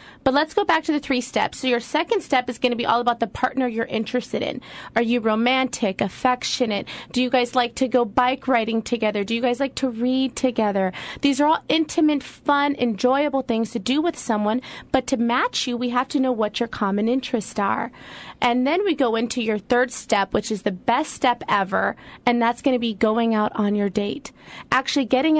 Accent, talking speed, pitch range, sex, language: American, 220 wpm, 220-275 Hz, female, English